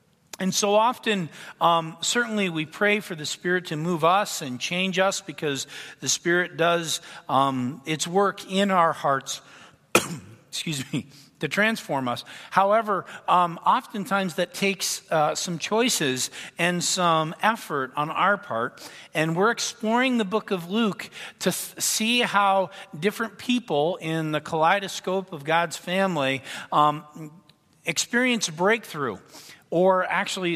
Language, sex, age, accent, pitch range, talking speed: English, male, 50-69, American, 155-210 Hz, 130 wpm